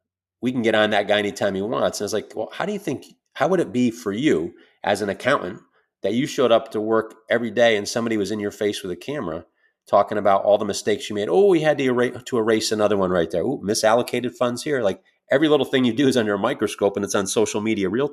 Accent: American